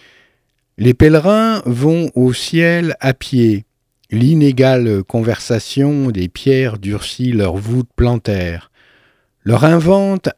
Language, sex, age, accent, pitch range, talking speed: French, male, 50-69, French, 115-150 Hz, 100 wpm